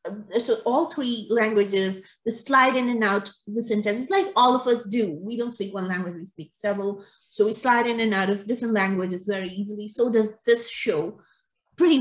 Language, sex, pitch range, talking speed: English, female, 200-255 Hz, 205 wpm